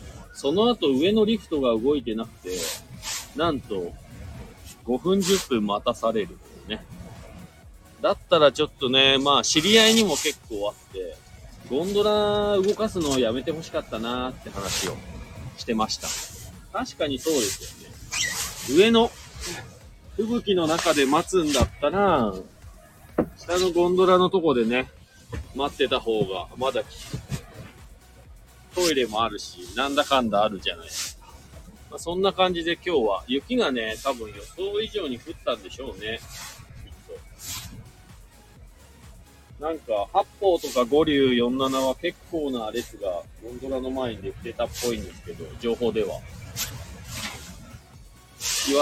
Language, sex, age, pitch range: Japanese, male, 40-59, 115-180 Hz